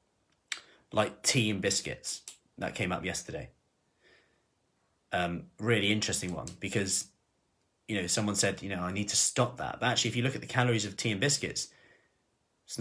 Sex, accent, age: male, British, 20-39